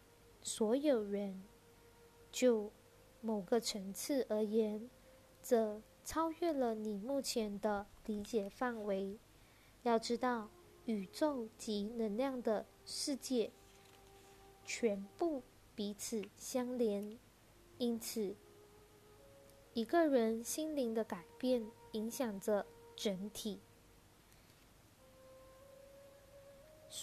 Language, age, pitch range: Chinese, 20-39, 200-245 Hz